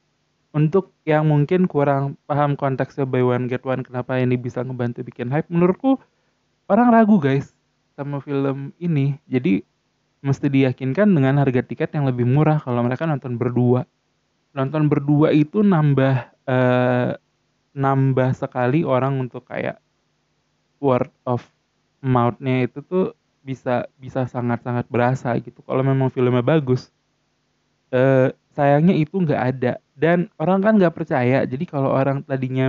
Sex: male